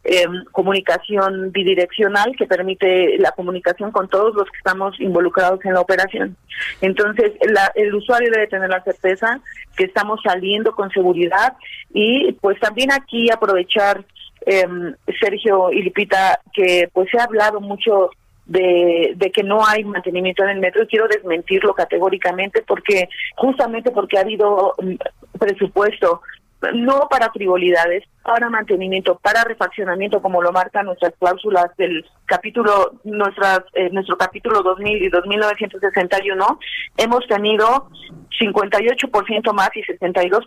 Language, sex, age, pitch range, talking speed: Spanish, female, 40-59, 185-225 Hz, 135 wpm